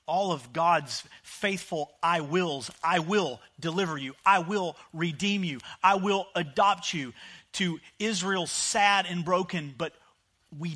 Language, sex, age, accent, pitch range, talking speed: English, male, 40-59, American, 115-180 Hz, 140 wpm